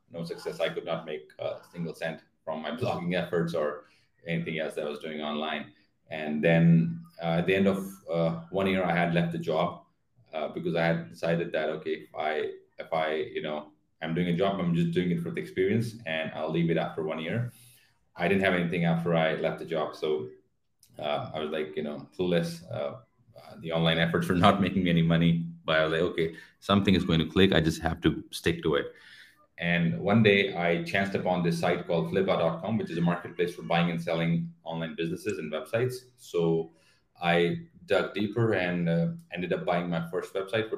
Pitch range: 85-100 Hz